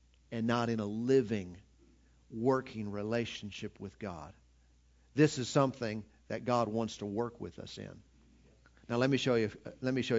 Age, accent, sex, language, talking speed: 50-69, American, male, English, 165 wpm